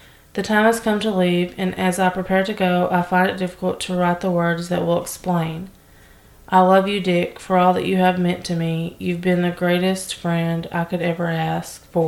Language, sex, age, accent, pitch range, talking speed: English, female, 20-39, American, 165-190 Hz, 225 wpm